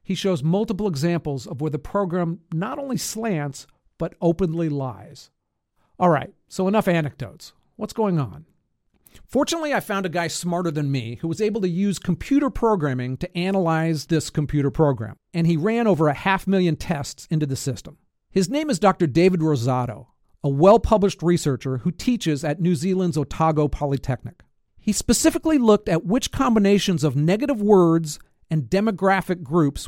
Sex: male